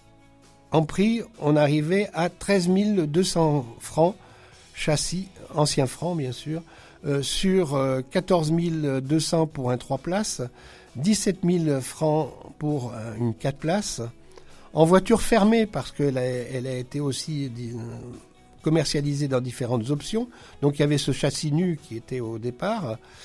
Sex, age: male, 60-79